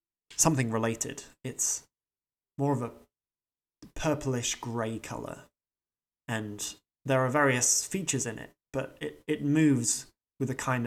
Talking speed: 120 wpm